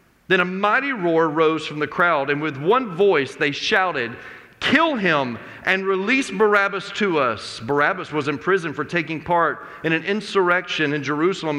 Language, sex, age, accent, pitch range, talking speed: English, male, 40-59, American, 145-195 Hz, 170 wpm